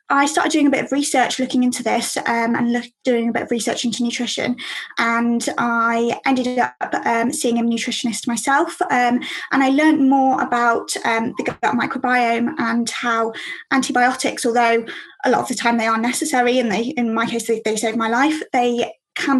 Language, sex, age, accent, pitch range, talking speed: English, female, 20-39, British, 230-265 Hz, 195 wpm